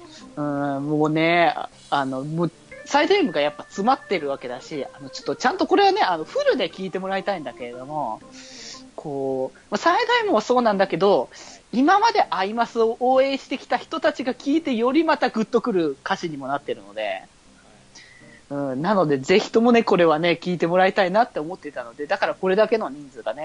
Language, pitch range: Japanese, 150-225 Hz